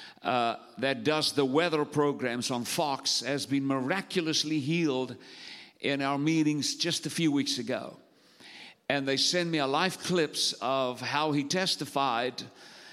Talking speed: 145 wpm